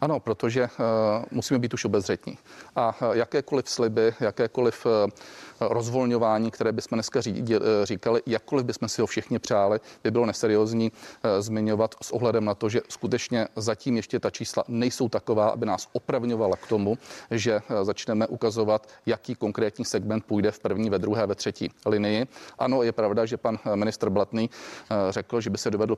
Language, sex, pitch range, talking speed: Czech, male, 105-120 Hz, 155 wpm